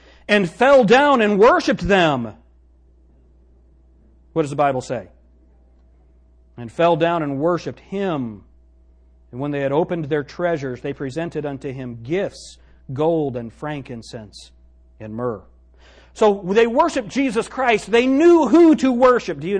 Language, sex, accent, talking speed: English, male, American, 140 wpm